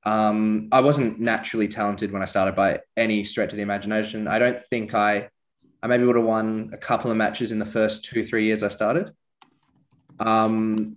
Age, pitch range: 20-39, 105-120 Hz